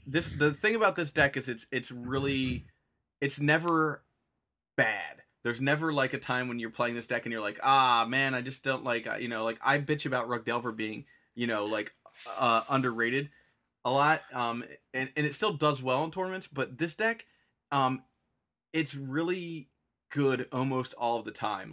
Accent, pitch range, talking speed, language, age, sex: American, 115-140 Hz, 190 wpm, English, 30-49, male